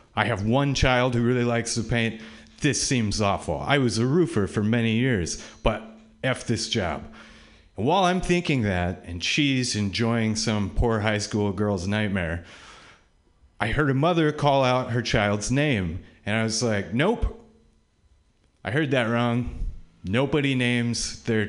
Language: English